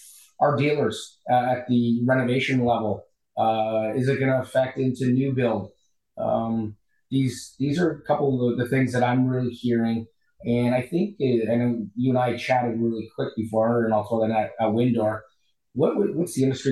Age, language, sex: 30-49, English, male